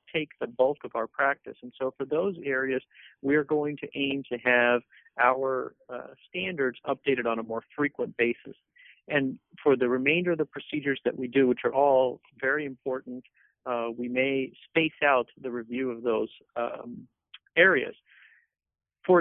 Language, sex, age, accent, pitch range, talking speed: English, male, 50-69, American, 120-140 Hz, 170 wpm